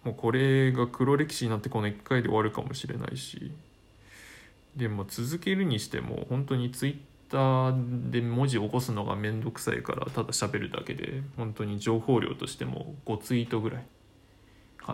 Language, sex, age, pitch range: Japanese, male, 20-39, 105-130 Hz